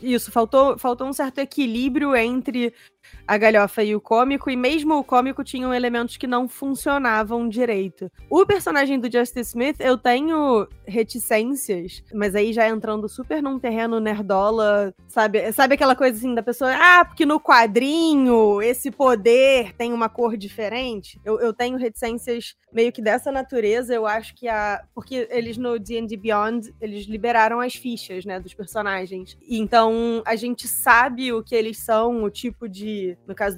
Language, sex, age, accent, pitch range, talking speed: Portuguese, female, 20-39, Brazilian, 215-255 Hz, 165 wpm